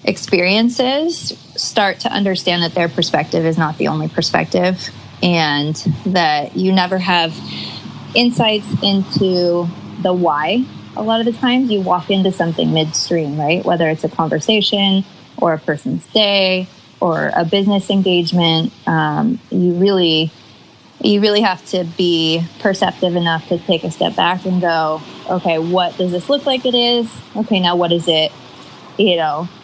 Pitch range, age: 165-200 Hz, 20-39